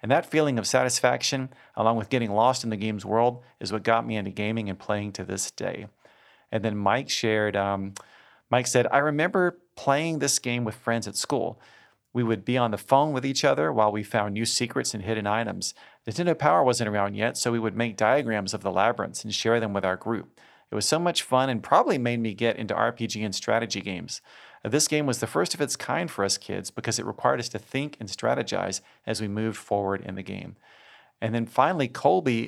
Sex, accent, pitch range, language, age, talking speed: male, American, 105-125 Hz, English, 40-59, 225 wpm